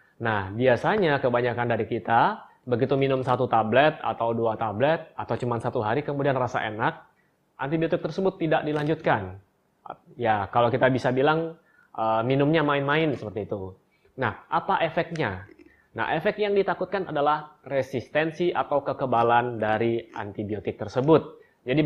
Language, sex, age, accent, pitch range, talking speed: Indonesian, male, 20-39, native, 120-155 Hz, 130 wpm